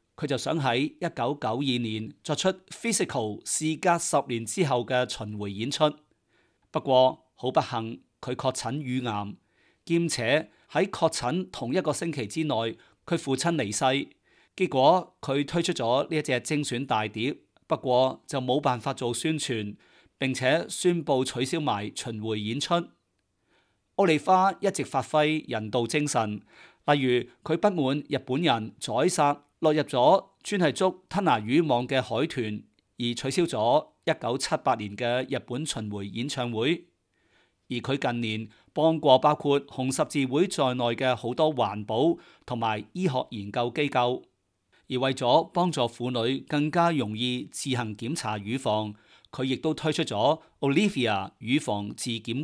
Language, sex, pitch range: Chinese, male, 120-155 Hz